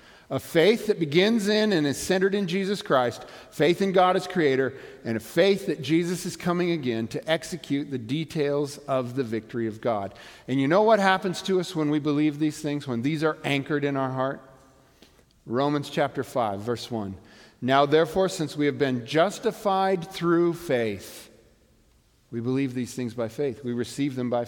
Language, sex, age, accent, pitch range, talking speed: English, male, 50-69, American, 140-210 Hz, 185 wpm